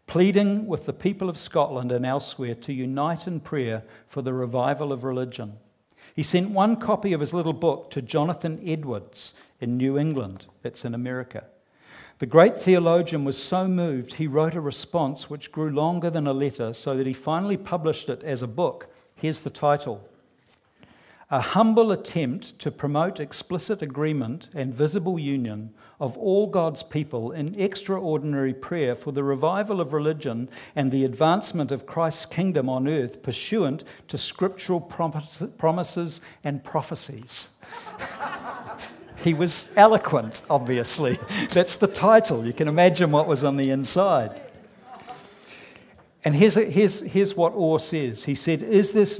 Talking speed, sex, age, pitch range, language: 150 wpm, male, 50-69, 135-175 Hz, English